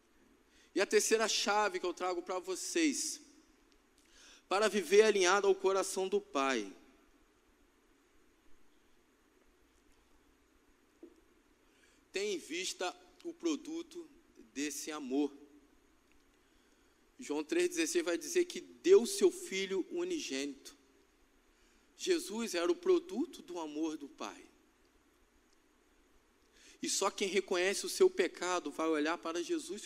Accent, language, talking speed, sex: Brazilian, Portuguese, 105 wpm, male